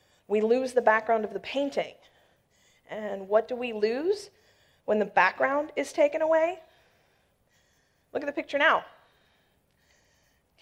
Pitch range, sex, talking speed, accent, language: 225-275 Hz, female, 135 wpm, American, English